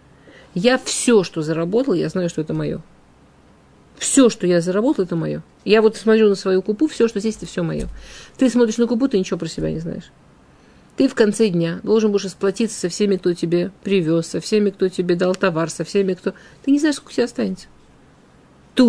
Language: Russian